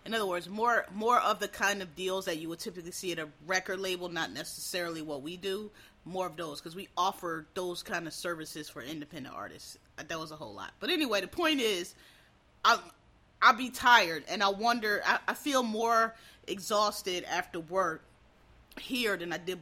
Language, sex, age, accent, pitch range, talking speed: English, female, 30-49, American, 170-235 Hz, 200 wpm